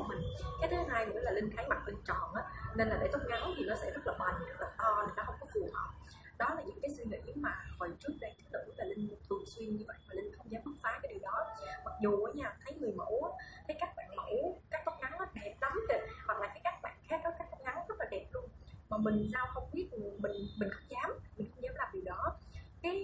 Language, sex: Vietnamese, female